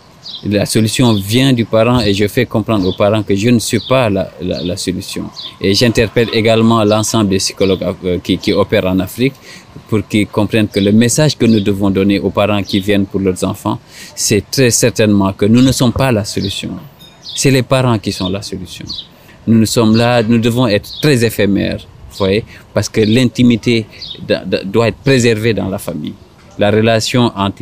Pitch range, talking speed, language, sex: 100-120 Hz, 190 wpm, French, male